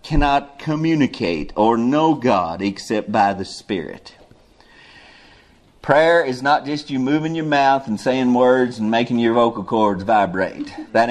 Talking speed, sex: 145 wpm, male